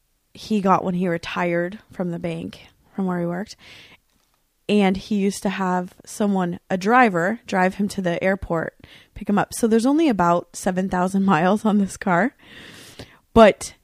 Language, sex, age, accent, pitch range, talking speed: English, female, 20-39, American, 180-210 Hz, 165 wpm